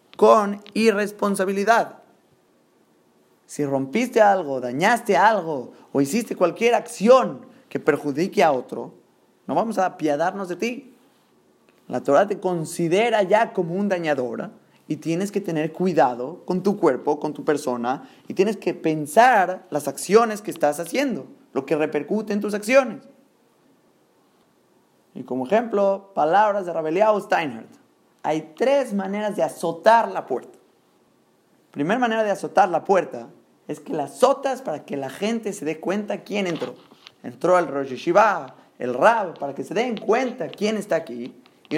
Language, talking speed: Spanish, 145 wpm